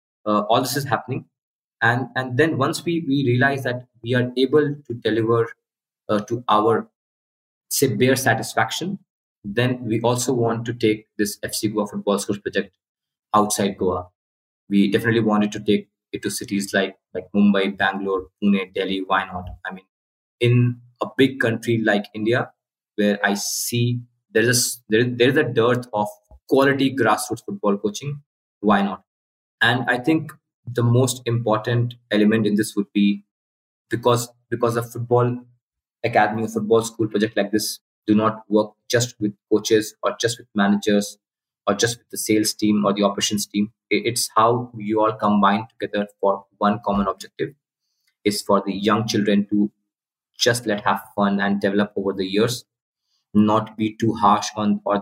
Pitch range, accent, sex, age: 100-120 Hz, Indian, male, 20-39